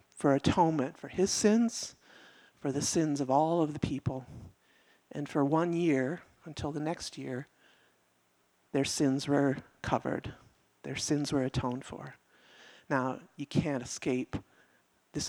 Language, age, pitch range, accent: English, 50-69, 140-170 Hz, American